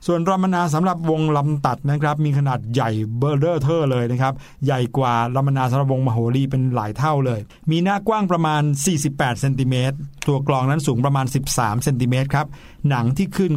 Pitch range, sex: 130-160 Hz, male